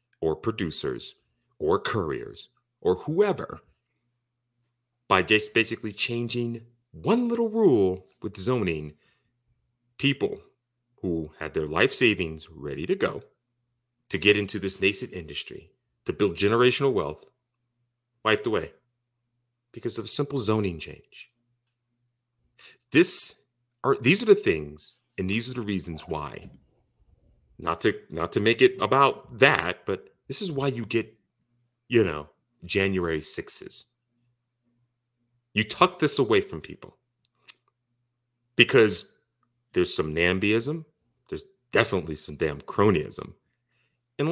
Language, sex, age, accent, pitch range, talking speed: English, male, 30-49, American, 110-125 Hz, 120 wpm